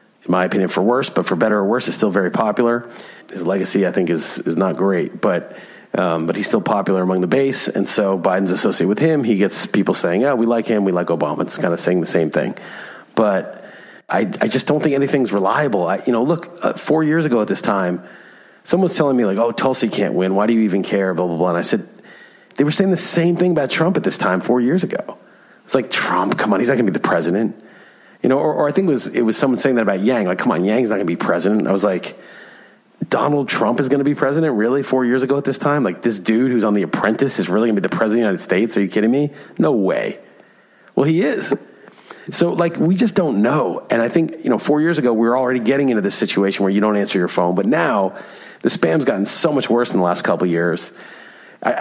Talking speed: 265 wpm